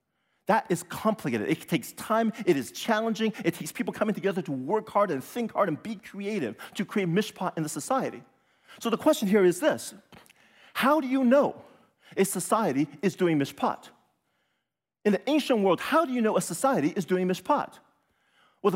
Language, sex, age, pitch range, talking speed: English, male, 40-59, 155-225 Hz, 185 wpm